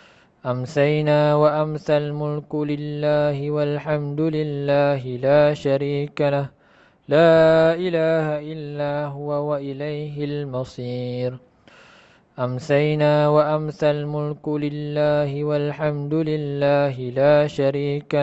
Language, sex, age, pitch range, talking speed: Malay, male, 20-39, 140-155 Hz, 80 wpm